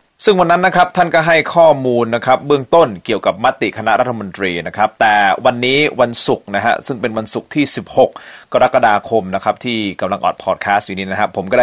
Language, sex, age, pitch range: Thai, male, 30-49, 120-160 Hz